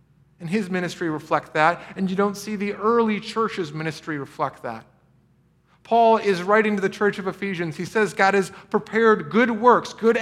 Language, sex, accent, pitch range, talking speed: English, male, American, 160-215 Hz, 180 wpm